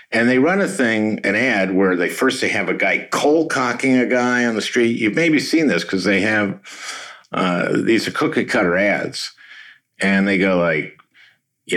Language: English